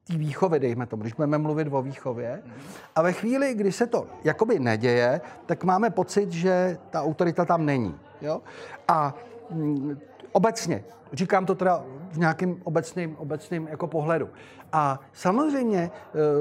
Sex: male